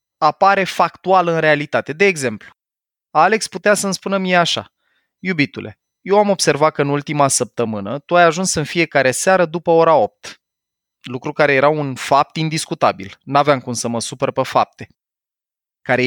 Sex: male